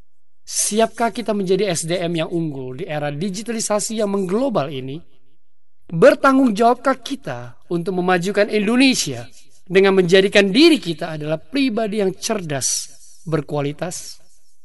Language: Indonesian